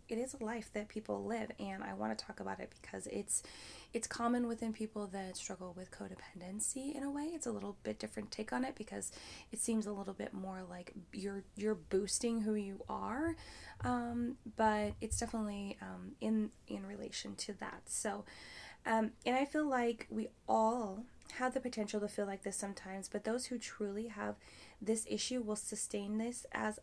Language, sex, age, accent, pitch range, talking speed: English, female, 20-39, American, 195-230 Hz, 190 wpm